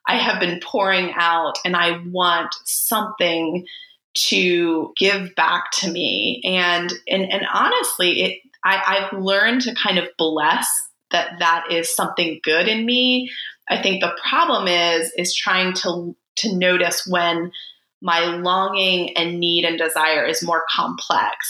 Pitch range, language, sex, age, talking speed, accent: 170-205 Hz, English, female, 20-39, 150 wpm, American